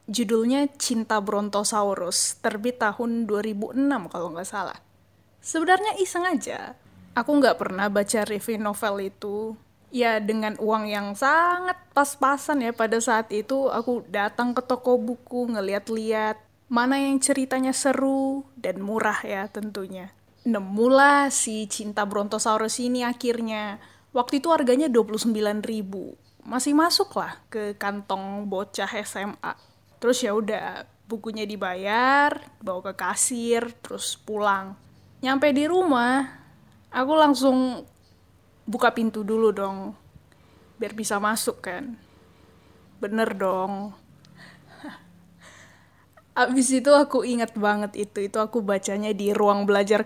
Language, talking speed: Indonesian, 115 wpm